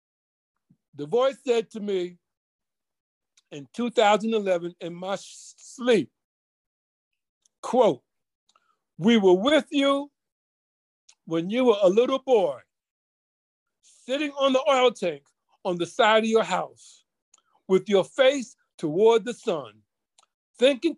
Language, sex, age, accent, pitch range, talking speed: Russian, male, 60-79, American, 185-250 Hz, 110 wpm